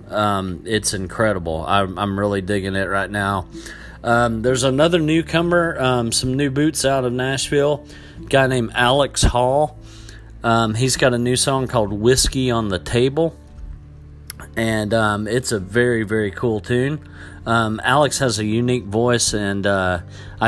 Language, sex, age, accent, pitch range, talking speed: English, male, 40-59, American, 95-125 Hz, 155 wpm